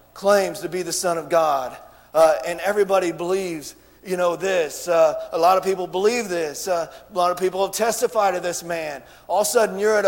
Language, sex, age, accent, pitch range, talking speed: English, male, 40-59, American, 195-245 Hz, 220 wpm